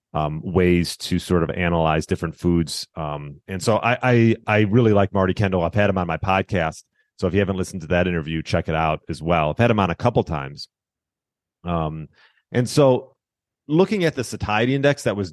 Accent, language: American, English